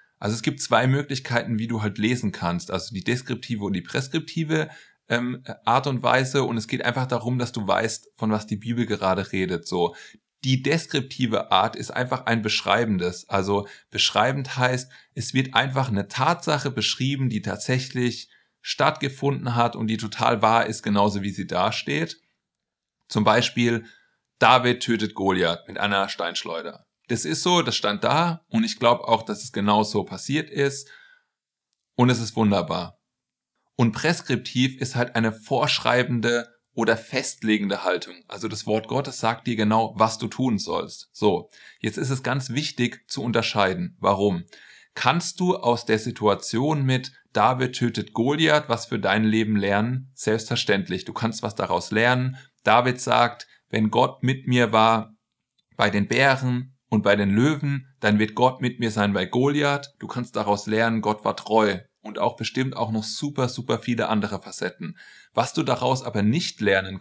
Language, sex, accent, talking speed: German, male, German, 165 wpm